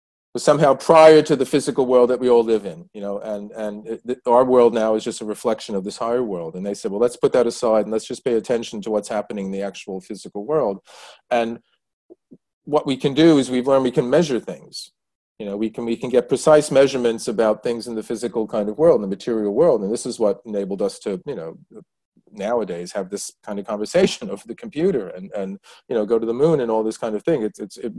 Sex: male